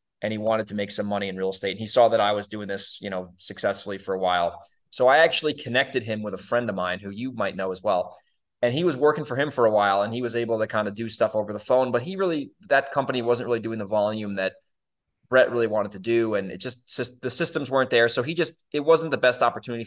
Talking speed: 280 wpm